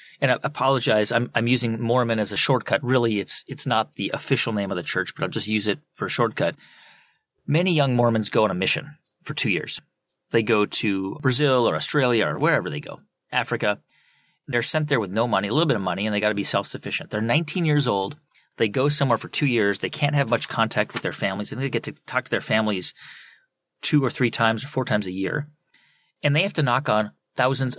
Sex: male